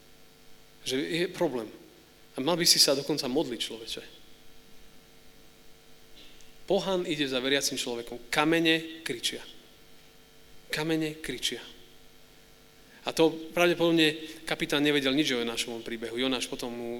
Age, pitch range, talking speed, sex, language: 30-49, 125-160 Hz, 115 wpm, male, Slovak